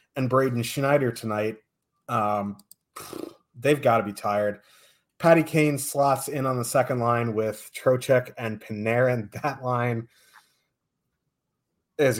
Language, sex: English, male